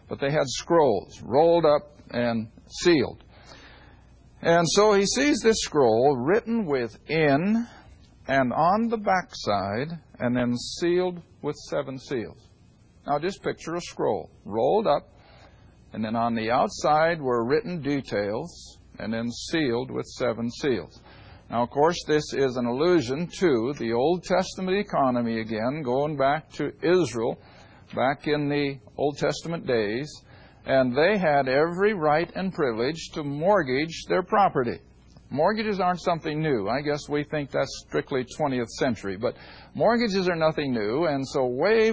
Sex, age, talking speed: male, 60-79, 145 wpm